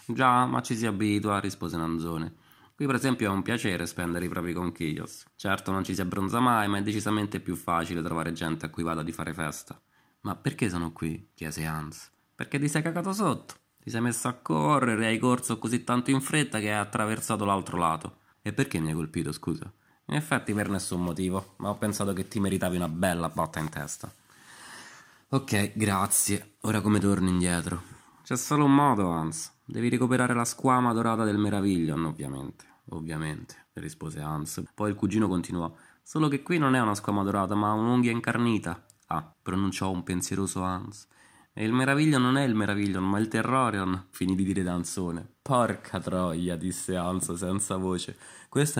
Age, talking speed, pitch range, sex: 20-39, 185 wpm, 90-115 Hz, male